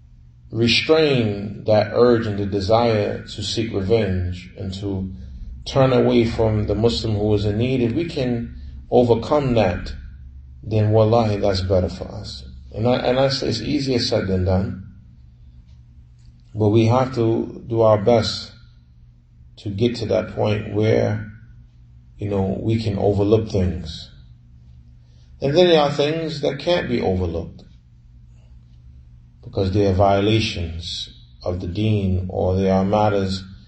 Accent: American